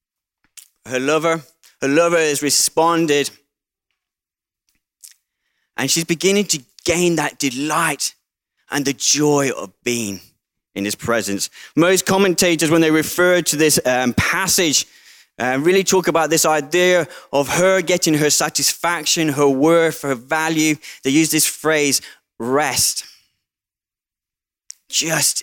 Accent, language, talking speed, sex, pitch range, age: British, English, 120 wpm, male, 135-170 Hz, 20-39